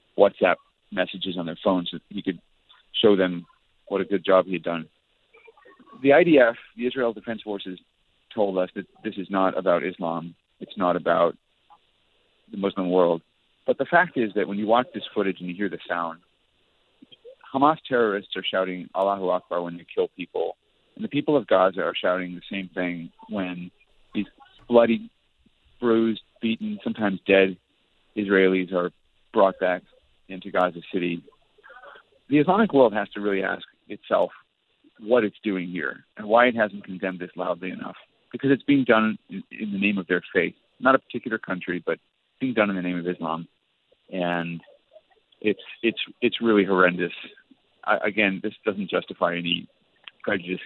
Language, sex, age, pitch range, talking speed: English, male, 40-59, 90-110 Hz, 165 wpm